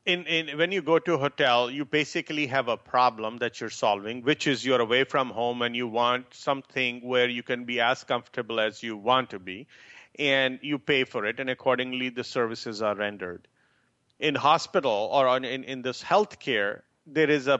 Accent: Indian